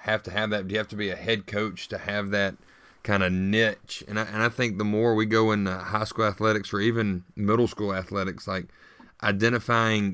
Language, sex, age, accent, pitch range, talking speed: English, male, 30-49, American, 95-115 Hz, 225 wpm